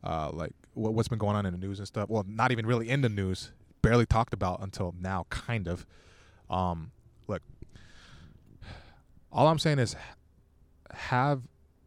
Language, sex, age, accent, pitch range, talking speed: English, male, 20-39, American, 85-125 Hz, 160 wpm